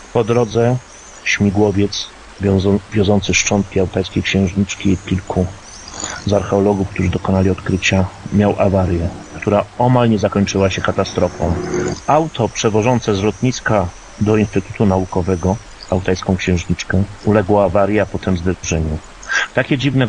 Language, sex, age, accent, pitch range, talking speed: Polish, male, 40-59, native, 95-110 Hz, 115 wpm